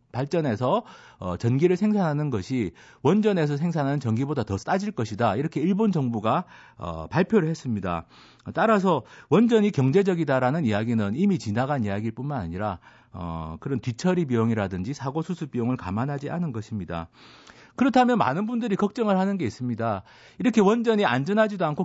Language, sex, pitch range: Korean, male, 115-195 Hz